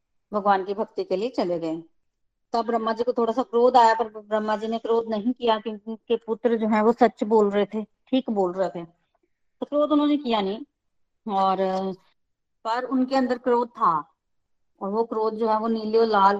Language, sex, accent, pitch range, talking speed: Hindi, female, native, 200-250 Hz, 215 wpm